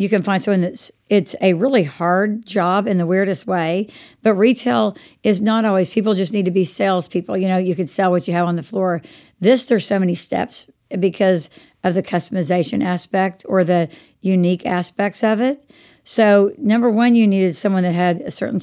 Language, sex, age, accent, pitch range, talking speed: English, female, 50-69, American, 180-215 Hz, 200 wpm